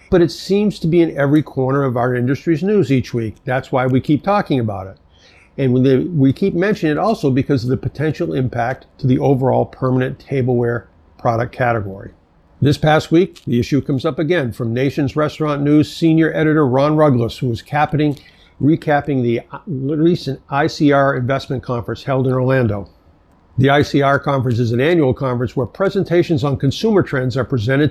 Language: English